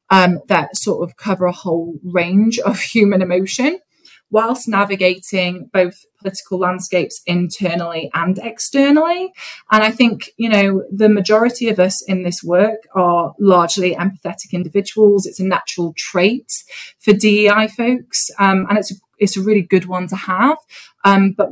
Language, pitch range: English, 175-200 Hz